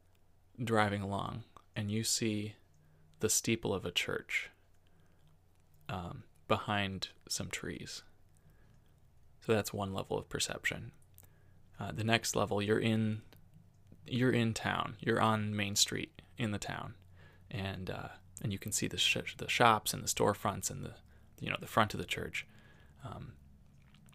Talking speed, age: 145 wpm, 20-39